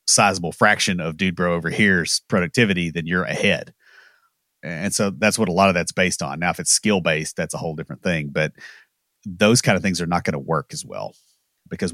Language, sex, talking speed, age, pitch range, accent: English, male, 220 wpm, 30-49, 85-110 Hz, American